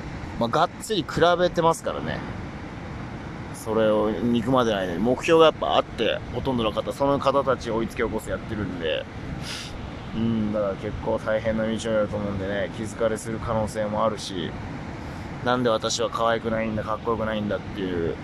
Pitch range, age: 105-135 Hz, 20-39